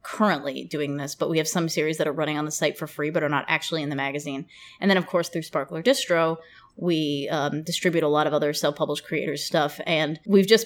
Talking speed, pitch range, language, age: 240 wpm, 150-175 Hz, English, 20-39